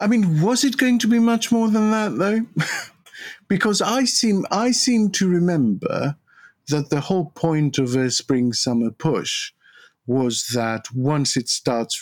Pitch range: 105-150 Hz